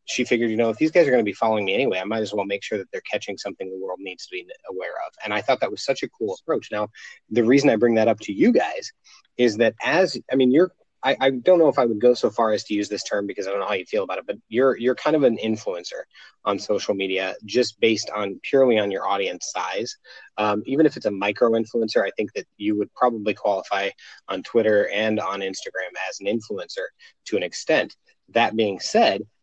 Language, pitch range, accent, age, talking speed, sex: English, 105-130 Hz, American, 30-49, 255 wpm, male